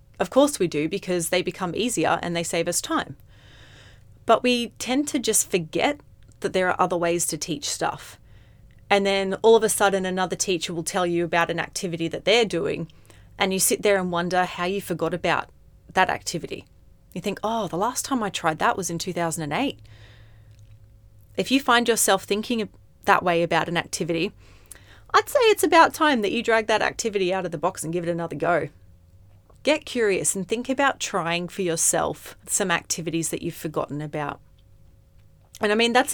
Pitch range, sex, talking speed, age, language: 155-195 Hz, female, 190 wpm, 30-49, English